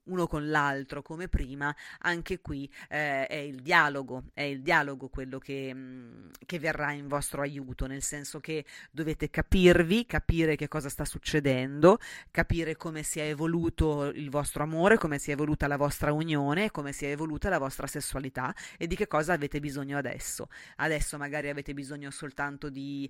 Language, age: Italian, 30-49